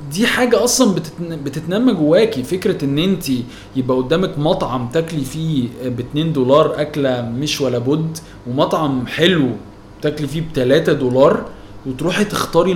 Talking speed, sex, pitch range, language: 125 wpm, male, 130-170 Hz, Arabic